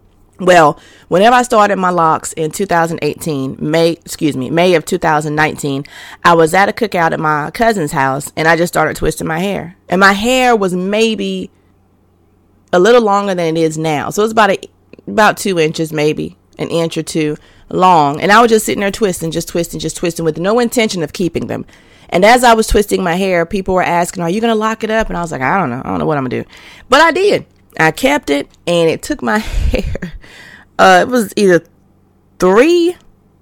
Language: English